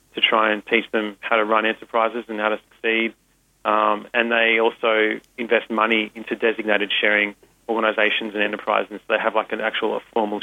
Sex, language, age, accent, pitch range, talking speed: male, English, 30-49, Australian, 105-115 Hz, 190 wpm